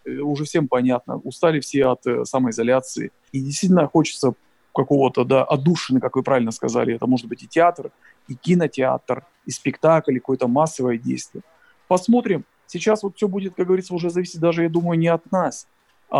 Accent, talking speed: native, 170 wpm